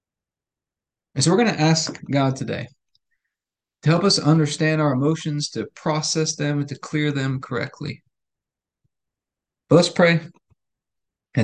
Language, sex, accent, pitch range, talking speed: English, male, American, 120-145 Hz, 135 wpm